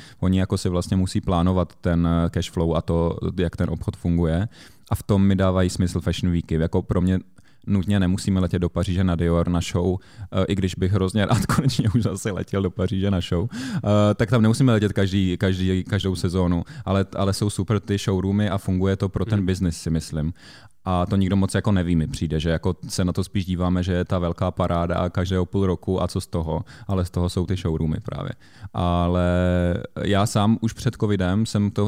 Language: Czech